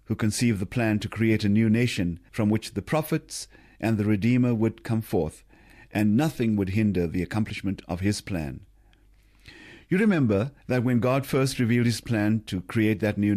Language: English